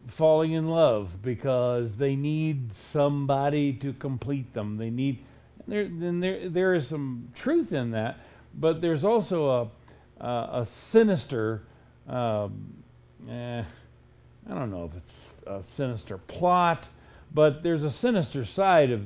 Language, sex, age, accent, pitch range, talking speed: English, male, 50-69, American, 125-160 Hz, 140 wpm